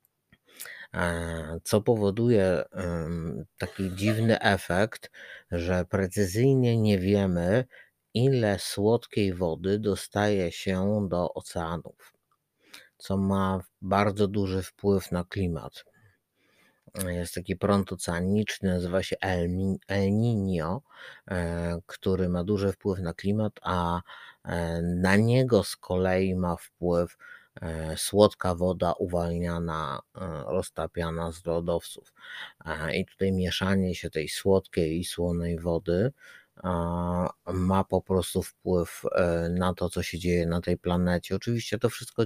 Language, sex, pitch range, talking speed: Polish, male, 85-100 Hz, 105 wpm